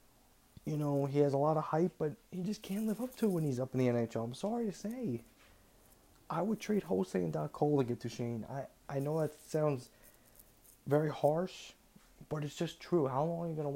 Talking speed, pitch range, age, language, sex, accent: 235 wpm, 120-150 Hz, 20-39, English, male, American